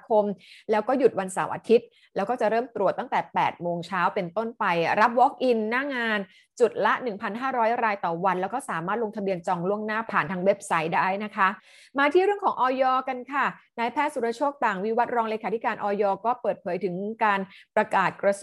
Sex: female